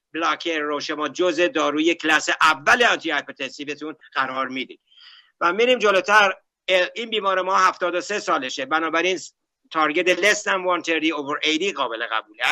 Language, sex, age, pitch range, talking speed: Persian, male, 60-79, 150-195 Hz, 135 wpm